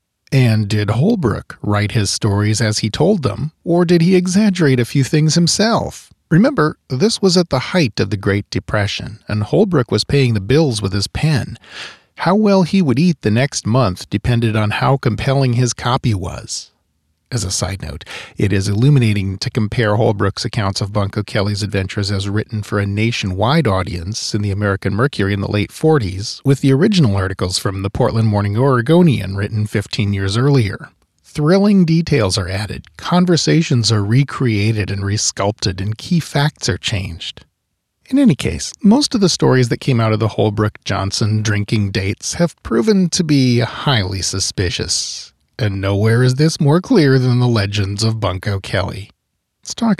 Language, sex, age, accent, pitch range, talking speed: English, male, 40-59, American, 100-150 Hz, 170 wpm